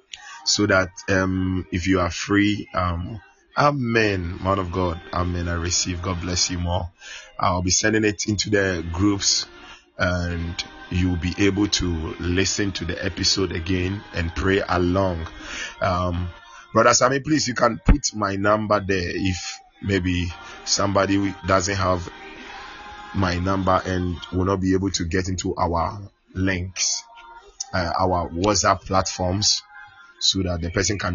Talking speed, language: 145 wpm, English